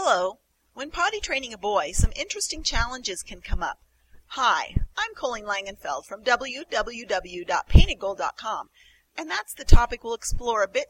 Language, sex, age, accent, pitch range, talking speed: English, female, 40-59, American, 190-275 Hz, 145 wpm